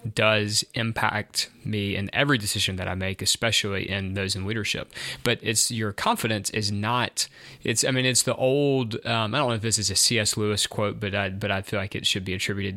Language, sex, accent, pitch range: English, male, American, 100-125 Hz